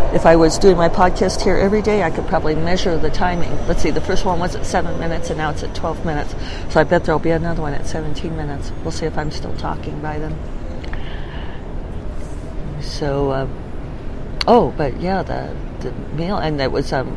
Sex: female